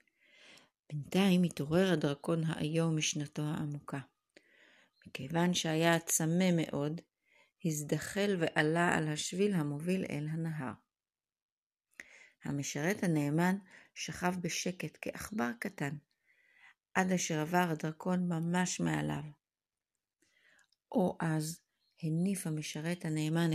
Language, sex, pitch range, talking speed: Hebrew, female, 155-180 Hz, 85 wpm